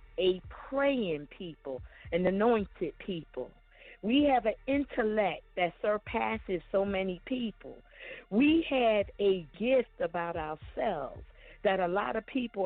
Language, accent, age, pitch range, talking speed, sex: English, American, 50-69, 180-255 Hz, 125 wpm, female